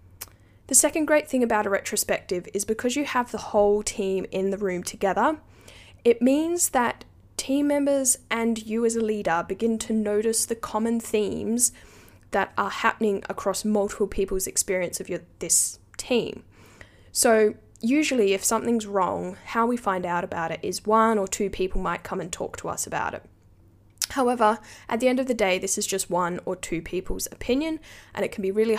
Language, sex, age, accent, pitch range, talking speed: English, female, 10-29, Australian, 180-230 Hz, 185 wpm